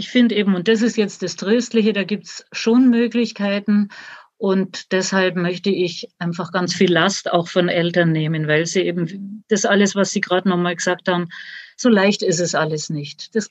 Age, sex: 50-69, female